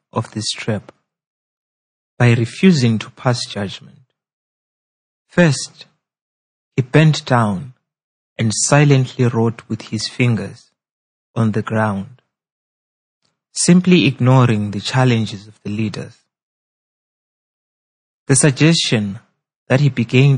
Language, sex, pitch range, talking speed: English, male, 110-140 Hz, 95 wpm